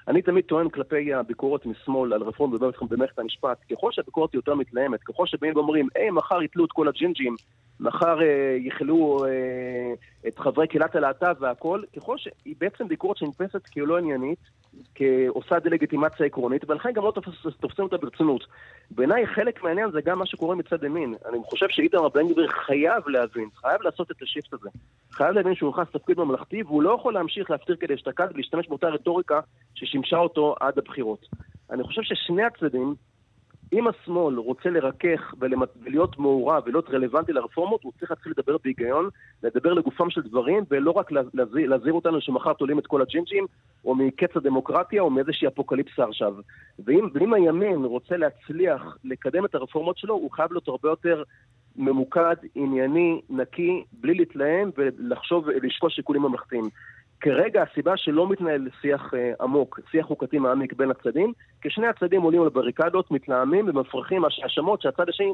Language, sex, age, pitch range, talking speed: Hebrew, male, 30-49, 130-175 Hz, 140 wpm